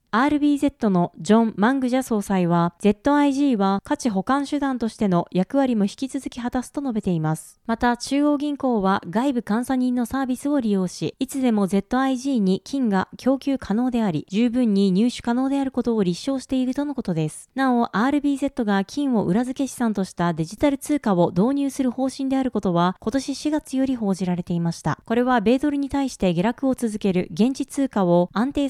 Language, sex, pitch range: Japanese, female, 195-270 Hz